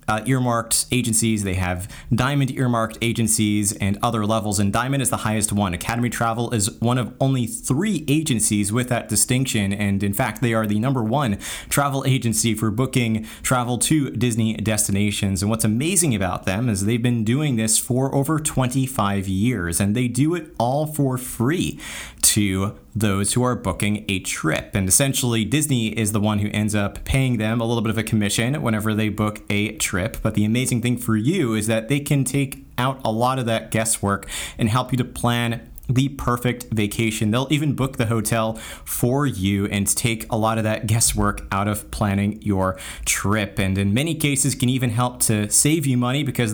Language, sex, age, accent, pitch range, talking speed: English, male, 30-49, American, 105-130 Hz, 195 wpm